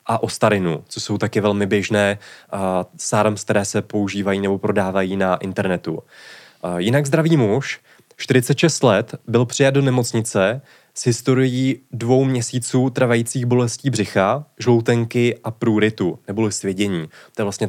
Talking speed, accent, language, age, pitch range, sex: 140 wpm, native, Czech, 20-39, 100-120 Hz, male